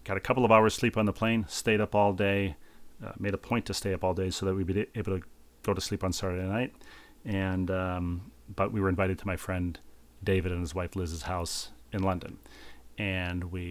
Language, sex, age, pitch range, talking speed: English, male, 40-59, 90-105 Hz, 230 wpm